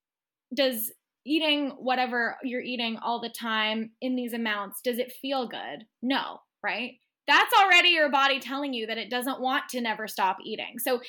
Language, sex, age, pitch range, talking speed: English, female, 10-29, 225-275 Hz, 175 wpm